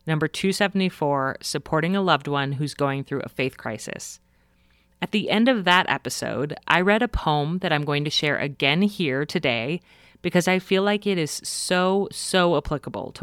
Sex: female